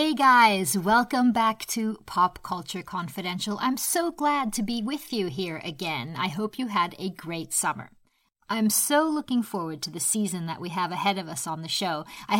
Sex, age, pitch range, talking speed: female, 50-69, 175-235 Hz, 200 wpm